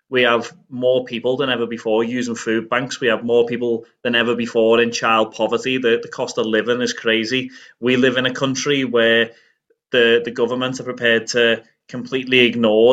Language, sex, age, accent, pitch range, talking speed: English, male, 20-39, British, 115-130 Hz, 190 wpm